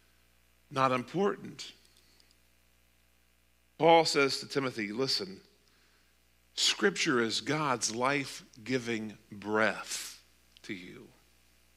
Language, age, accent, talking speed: English, 50-69, American, 70 wpm